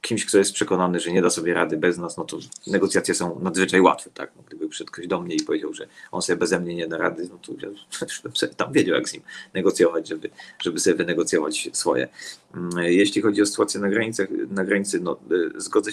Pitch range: 90-105 Hz